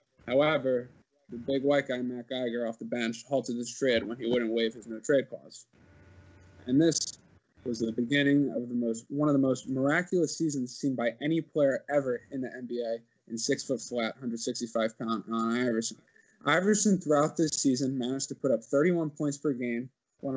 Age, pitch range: 20-39, 120-140 Hz